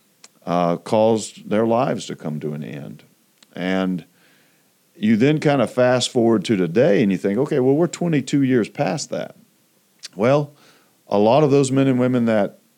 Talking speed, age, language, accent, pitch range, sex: 175 wpm, 40-59, English, American, 85-120 Hz, male